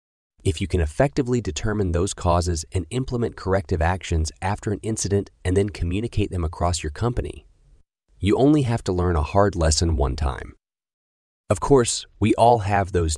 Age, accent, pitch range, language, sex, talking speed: 30-49, American, 80-100 Hz, English, male, 170 wpm